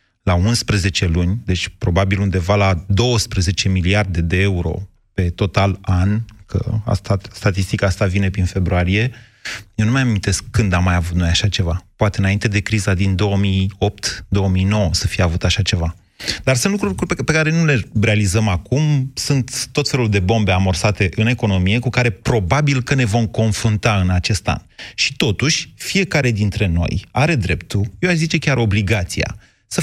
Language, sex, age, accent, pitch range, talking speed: Romanian, male, 30-49, native, 100-135 Hz, 165 wpm